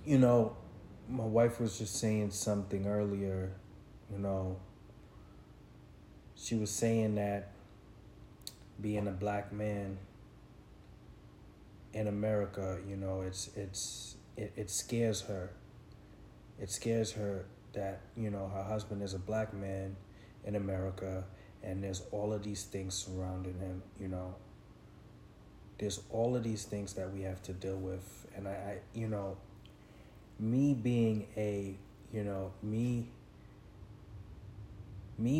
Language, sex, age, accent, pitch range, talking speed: English, male, 30-49, American, 100-105 Hz, 130 wpm